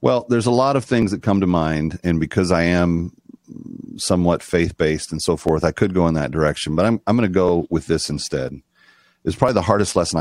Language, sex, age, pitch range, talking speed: English, male, 40-59, 80-95 Hz, 230 wpm